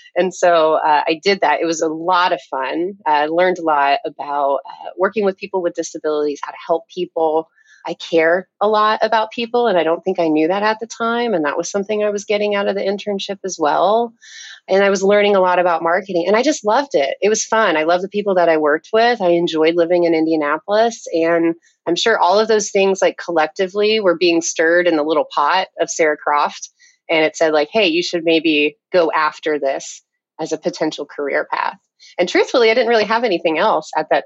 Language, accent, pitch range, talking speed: English, American, 160-200 Hz, 230 wpm